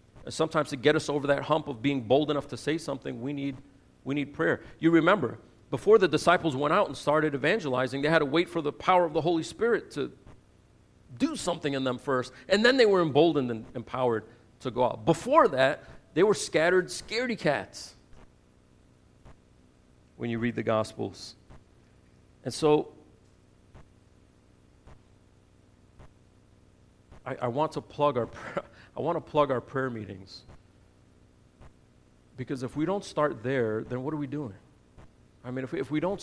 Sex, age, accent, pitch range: male, 40-59, American, 120-155 Hz